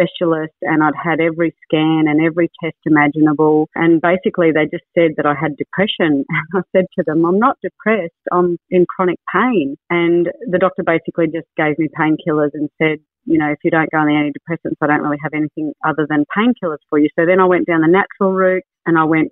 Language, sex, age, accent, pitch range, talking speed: English, female, 40-59, Australian, 160-185 Hz, 220 wpm